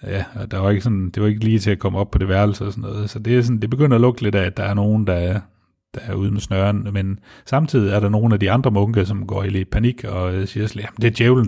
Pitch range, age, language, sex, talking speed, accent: 95-115 Hz, 30-49, Danish, male, 320 wpm, native